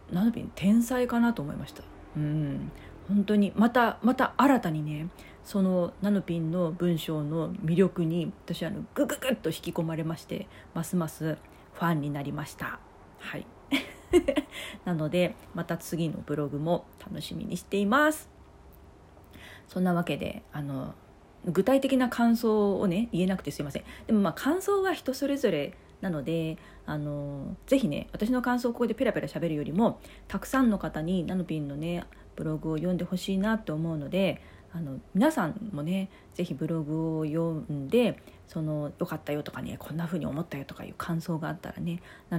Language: Japanese